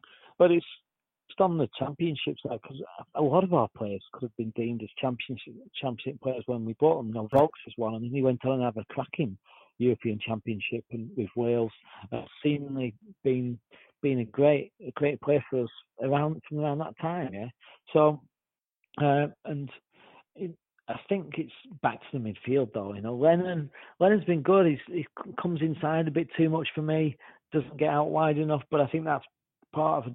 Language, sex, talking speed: English, male, 200 wpm